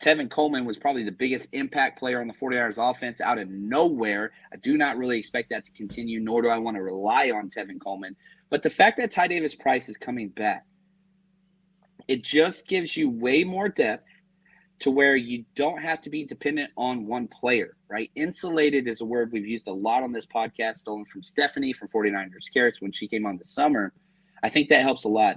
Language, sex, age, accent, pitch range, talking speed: English, male, 30-49, American, 120-190 Hz, 215 wpm